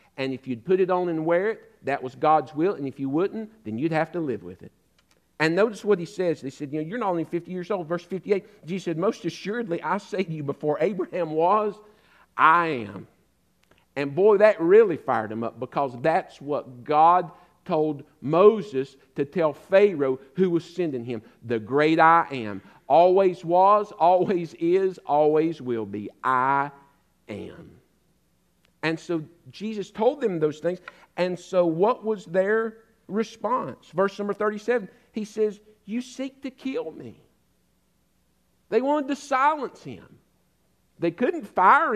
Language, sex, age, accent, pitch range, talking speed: English, male, 50-69, American, 155-220 Hz, 170 wpm